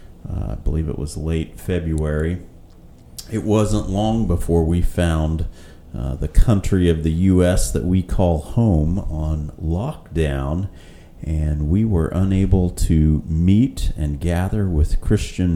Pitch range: 80-95 Hz